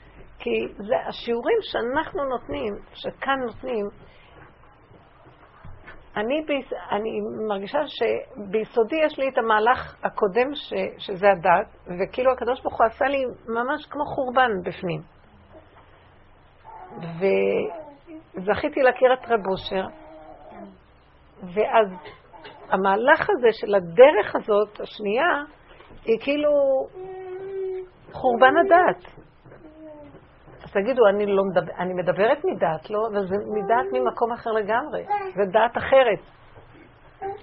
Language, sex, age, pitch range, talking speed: Hebrew, female, 50-69, 215-295 Hz, 100 wpm